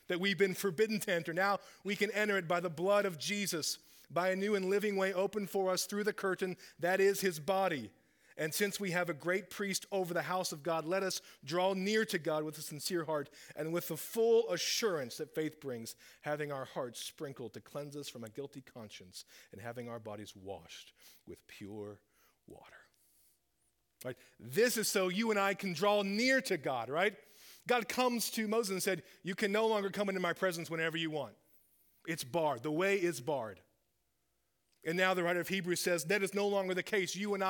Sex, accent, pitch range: male, American, 145-195 Hz